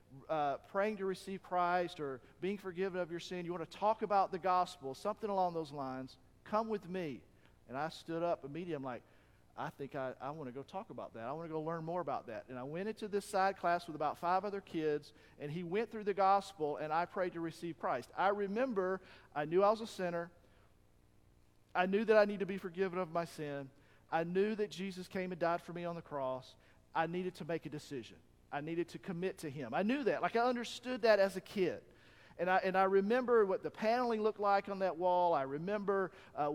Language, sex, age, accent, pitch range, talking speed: English, male, 50-69, American, 145-195 Hz, 235 wpm